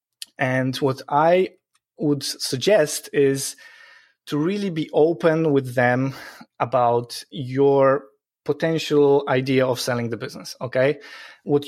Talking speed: 115 wpm